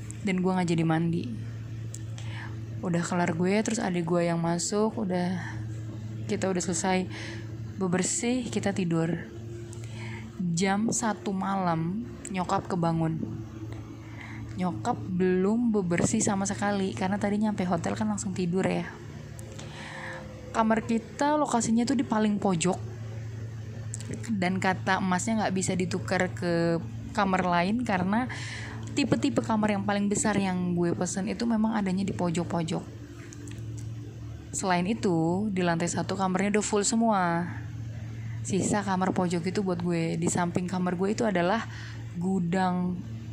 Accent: native